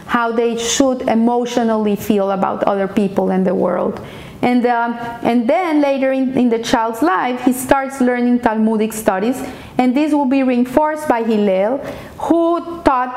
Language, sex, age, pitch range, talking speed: English, female, 30-49, 215-265 Hz, 160 wpm